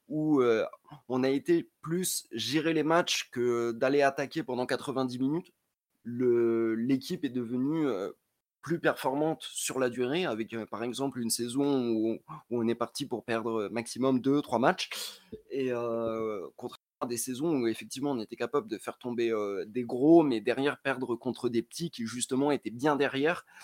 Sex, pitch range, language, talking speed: male, 120-150 Hz, French, 180 wpm